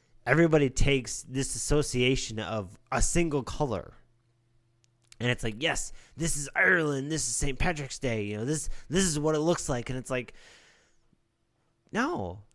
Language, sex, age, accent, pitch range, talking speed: English, male, 30-49, American, 125-185 Hz, 160 wpm